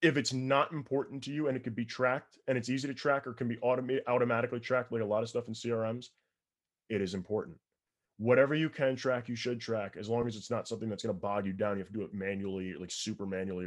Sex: male